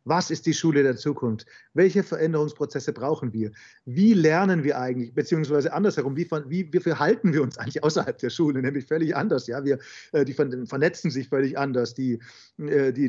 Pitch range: 135-170 Hz